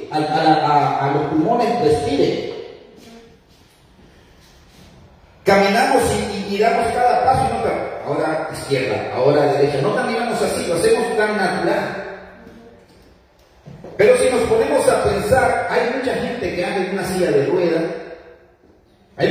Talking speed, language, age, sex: 135 wpm, Spanish, 30-49, male